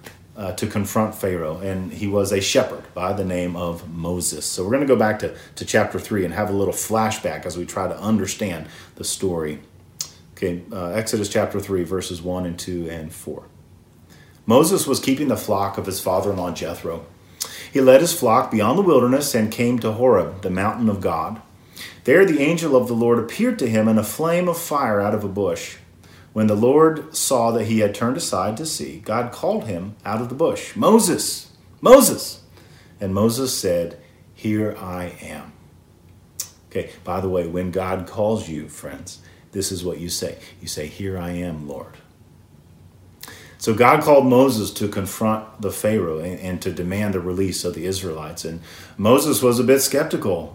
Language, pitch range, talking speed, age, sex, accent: English, 90-115 Hz, 185 wpm, 40-59, male, American